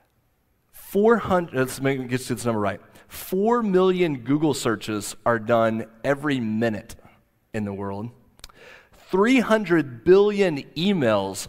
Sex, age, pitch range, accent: male, 30-49, 120-180 Hz, American